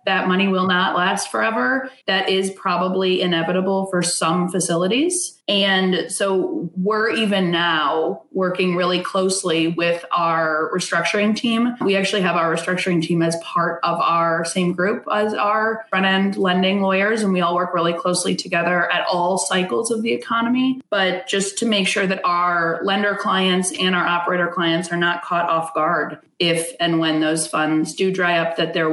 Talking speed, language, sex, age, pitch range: 170 wpm, English, female, 20-39, 160-190 Hz